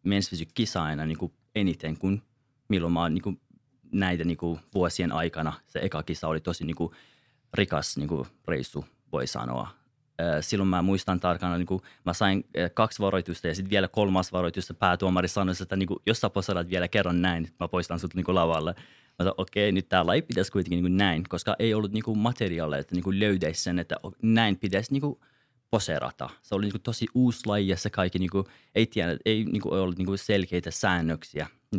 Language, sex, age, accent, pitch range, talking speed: Finnish, male, 30-49, native, 85-100 Hz, 150 wpm